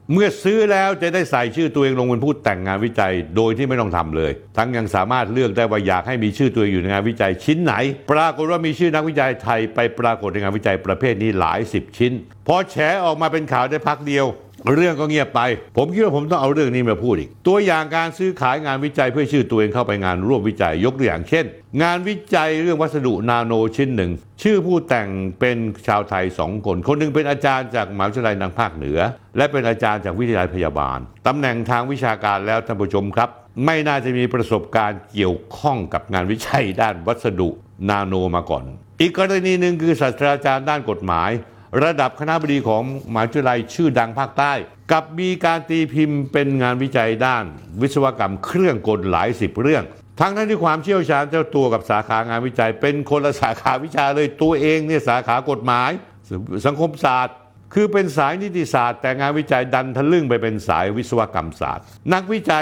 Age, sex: 60-79, male